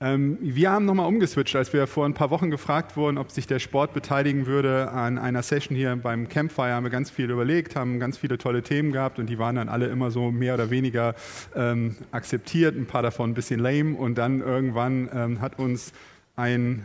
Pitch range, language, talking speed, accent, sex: 110-135 Hz, German, 215 wpm, German, male